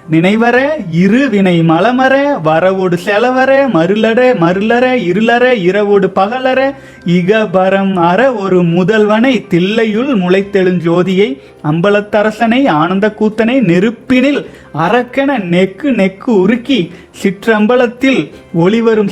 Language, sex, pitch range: Tamil, male, 180-235 Hz